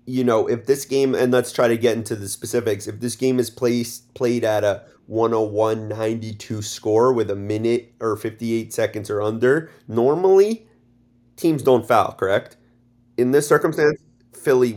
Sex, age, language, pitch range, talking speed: male, 30-49, English, 110-125 Hz, 160 wpm